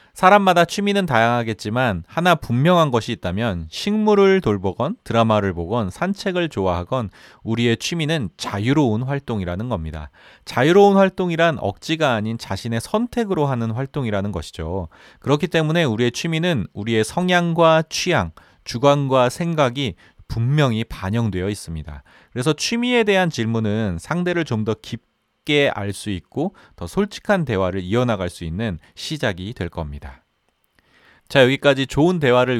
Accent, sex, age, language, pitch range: native, male, 30-49, Korean, 95-160 Hz